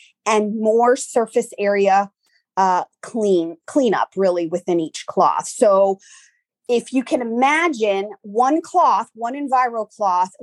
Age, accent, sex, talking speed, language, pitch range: 30-49, American, female, 120 wpm, English, 200-275 Hz